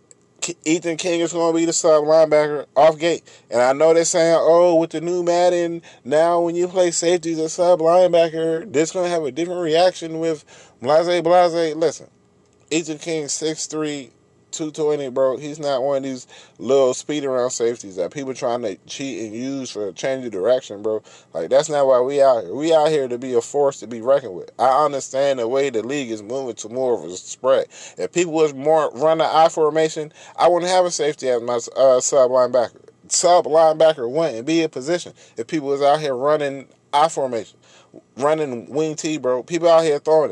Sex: male